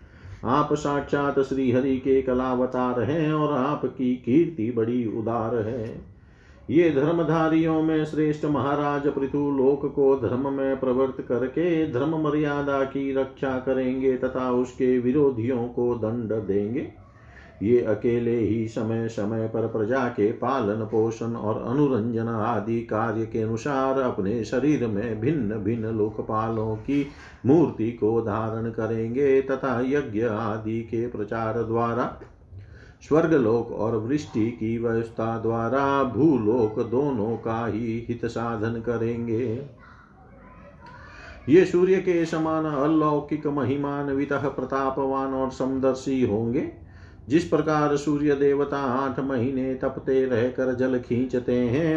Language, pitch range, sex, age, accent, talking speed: Hindi, 115-140 Hz, male, 50-69, native, 120 wpm